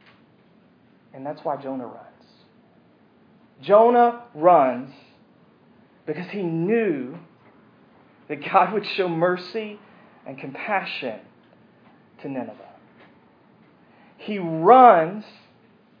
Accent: American